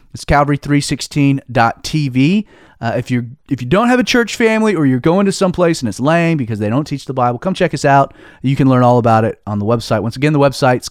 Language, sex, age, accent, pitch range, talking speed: English, male, 30-49, American, 125-180 Hz, 235 wpm